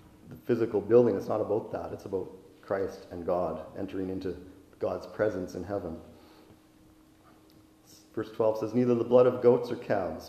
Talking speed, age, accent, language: 165 wpm, 40-59, American, English